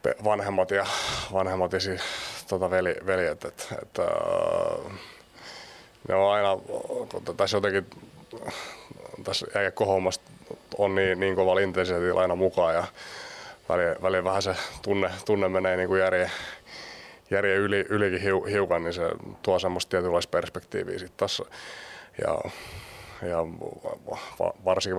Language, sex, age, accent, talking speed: Finnish, male, 20-39, native, 120 wpm